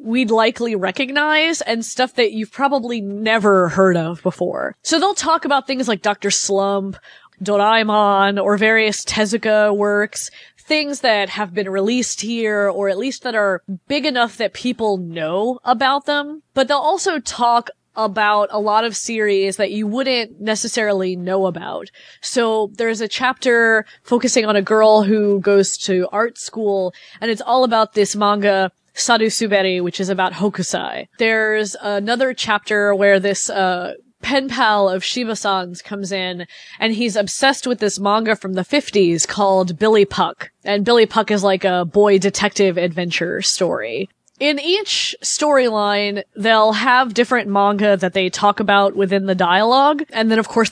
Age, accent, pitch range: 20-39, American, 200-240 Hz